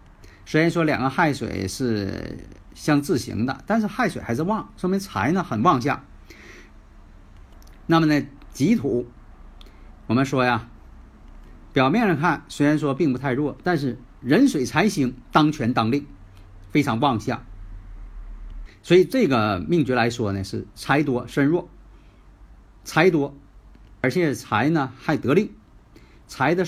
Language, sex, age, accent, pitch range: Chinese, male, 50-69, native, 105-145 Hz